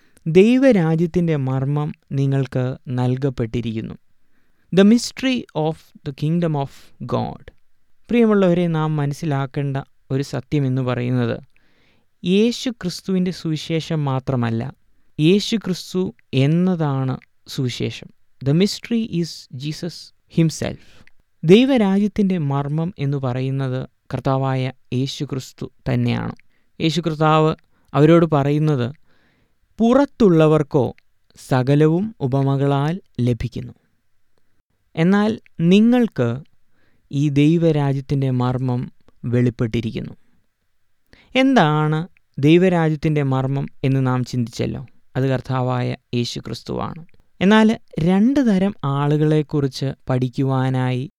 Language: Malayalam